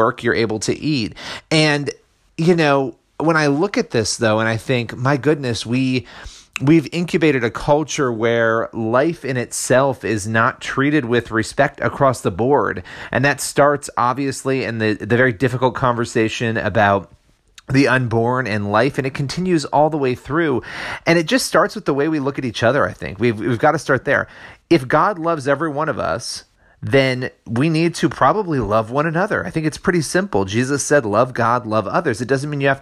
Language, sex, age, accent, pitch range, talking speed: English, male, 30-49, American, 115-145 Hz, 200 wpm